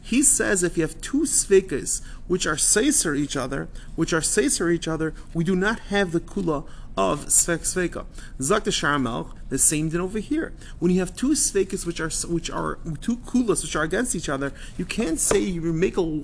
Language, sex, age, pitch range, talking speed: English, male, 30-49, 140-195 Hz, 205 wpm